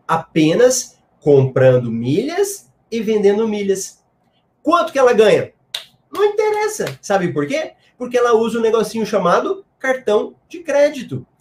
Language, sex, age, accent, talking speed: Portuguese, male, 30-49, Brazilian, 125 wpm